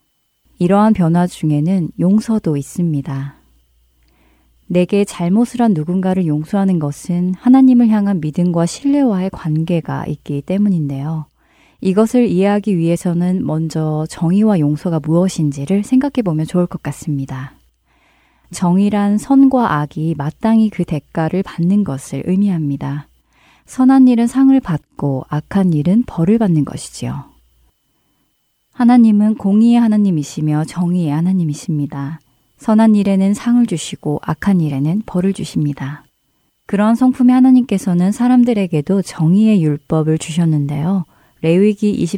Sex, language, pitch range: female, Korean, 150-210 Hz